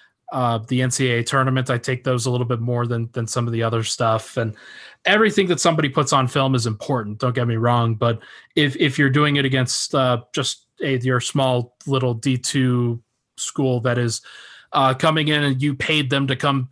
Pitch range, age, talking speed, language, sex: 120-140 Hz, 20-39, 210 wpm, English, male